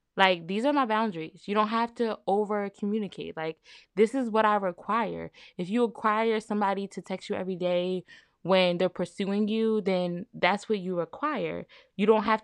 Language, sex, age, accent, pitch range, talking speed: English, female, 10-29, American, 175-220 Hz, 180 wpm